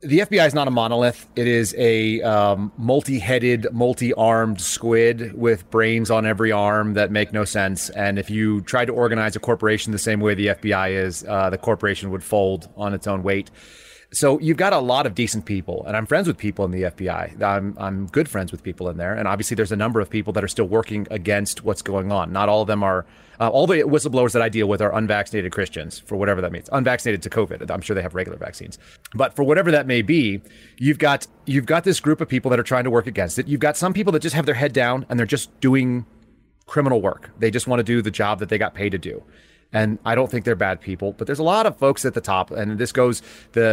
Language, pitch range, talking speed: English, 105-125 Hz, 250 wpm